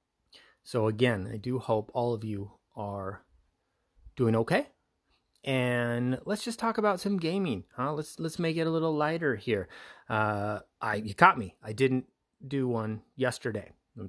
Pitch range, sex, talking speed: 110-145 Hz, male, 160 wpm